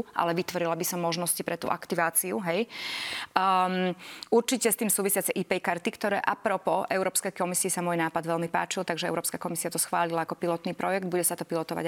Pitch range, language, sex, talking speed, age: 175-200 Hz, Slovak, female, 185 wpm, 20-39